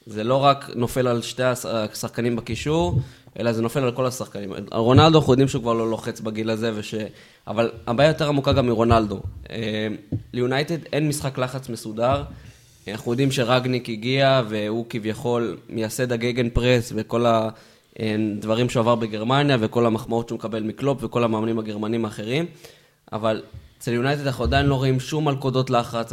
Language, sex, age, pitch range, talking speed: Hebrew, male, 20-39, 115-140 Hz, 155 wpm